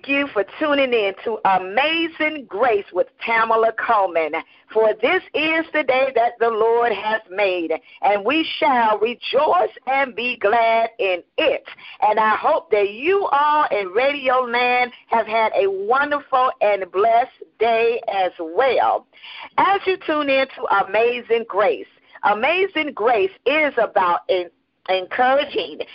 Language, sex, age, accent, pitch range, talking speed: English, female, 40-59, American, 210-305 Hz, 140 wpm